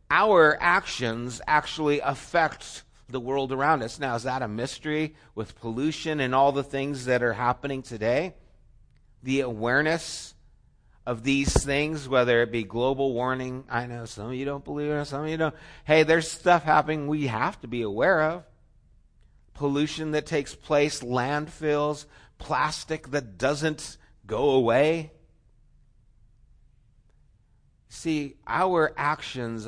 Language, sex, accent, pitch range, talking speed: English, male, American, 125-155 Hz, 140 wpm